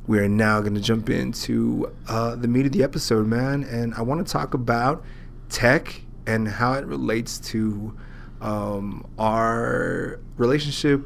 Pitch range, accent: 110-125 Hz, American